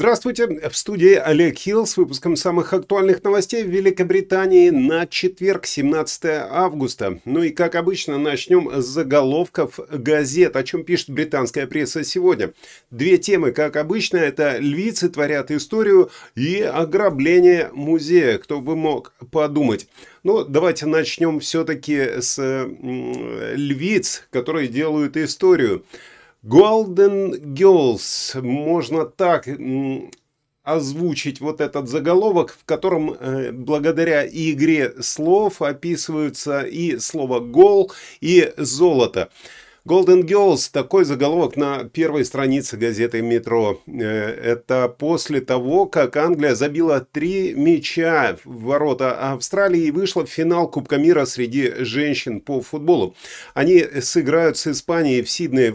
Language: Russian